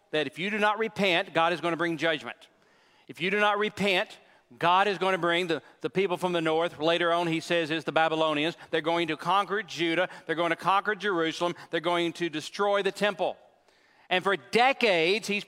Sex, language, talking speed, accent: male, English, 215 wpm, American